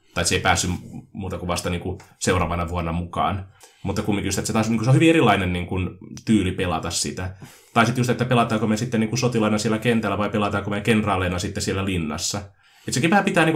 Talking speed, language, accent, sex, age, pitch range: 230 wpm, Finnish, native, male, 20-39, 90-110 Hz